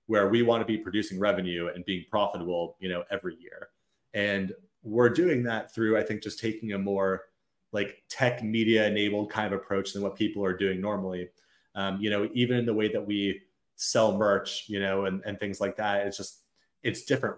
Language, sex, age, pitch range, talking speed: English, male, 30-49, 100-125 Hz, 205 wpm